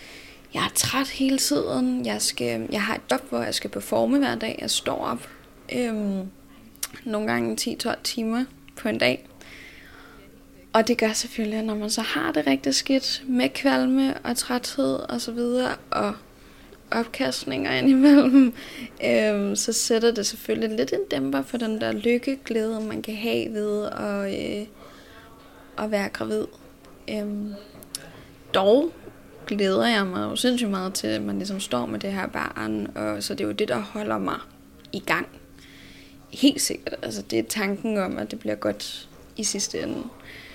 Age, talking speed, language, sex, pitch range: 20-39, 160 wpm, Danish, female, 195-255 Hz